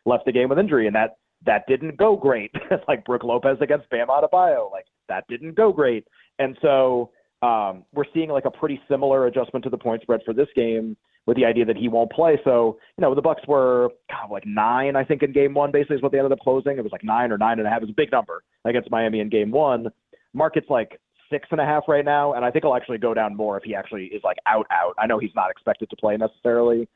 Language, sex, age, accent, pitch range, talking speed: English, male, 30-49, American, 110-140 Hz, 265 wpm